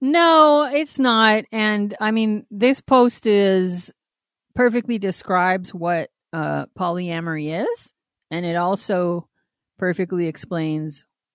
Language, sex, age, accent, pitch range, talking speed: English, female, 40-59, American, 160-205 Hz, 105 wpm